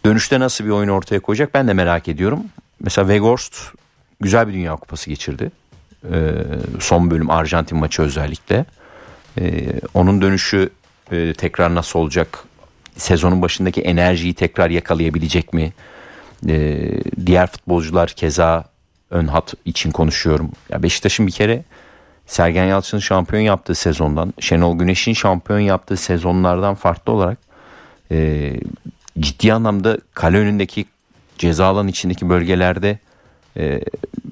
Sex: male